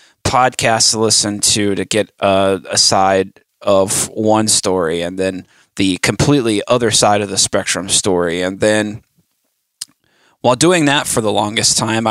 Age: 20-39